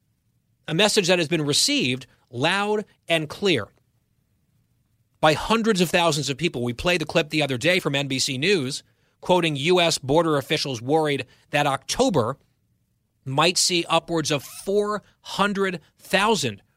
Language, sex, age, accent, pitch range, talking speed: English, male, 30-49, American, 130-180 Hz, 130 wpm